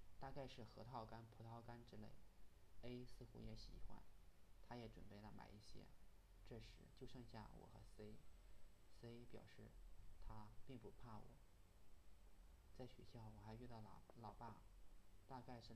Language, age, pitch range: Chinese, 20-39, 95-120 Hz